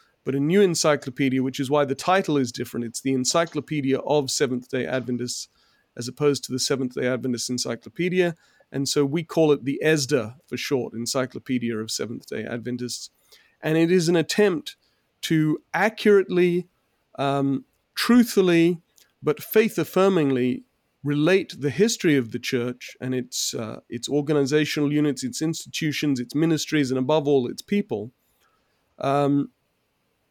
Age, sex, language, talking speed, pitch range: 30-49, male, English, 140 wpm, 130-160 Hz